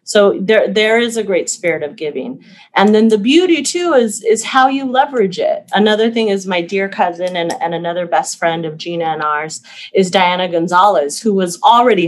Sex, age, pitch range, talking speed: female, 30-49, 180-230 Hz, 205 wpm